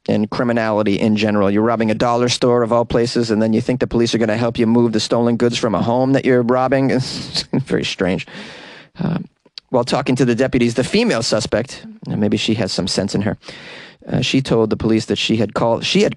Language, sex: English, male